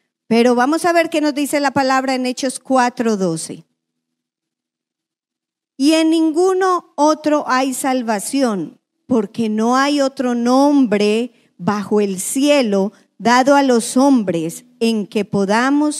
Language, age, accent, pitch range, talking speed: English, 40-59, American, 215-285 Hz, 130 wpm